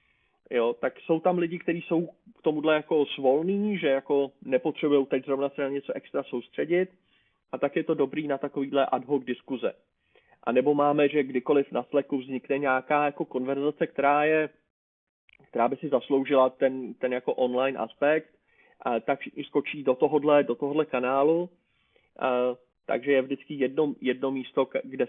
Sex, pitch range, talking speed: male, 120-145 Hz, 165 wpm